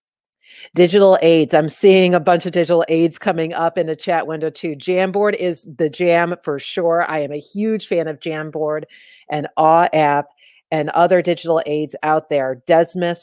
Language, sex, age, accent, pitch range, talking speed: English, female, 40-59, American, 150-180 Hz, 175 wpm